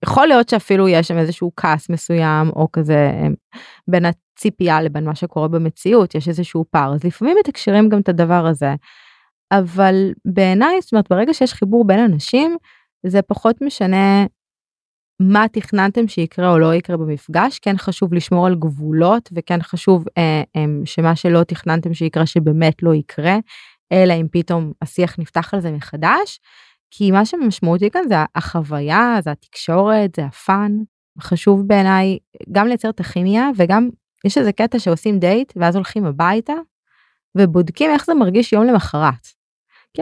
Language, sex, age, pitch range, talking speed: Hebrew, female, 20-39, 170-225 Hz, 150 wpm